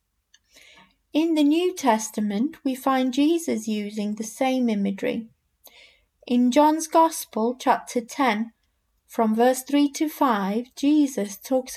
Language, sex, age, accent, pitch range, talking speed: English, female, 30-49, British, 225-290 Hz, 115 wpm